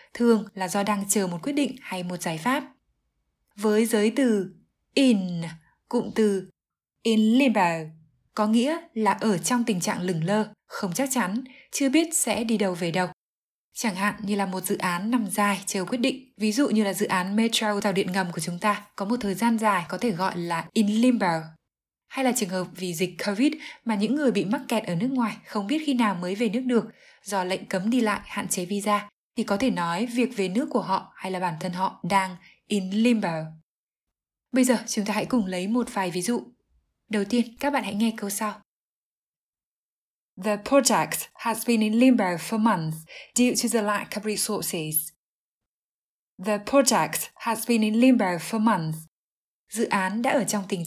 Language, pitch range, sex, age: Vietnamese, 185-235 Hz, female, 20-39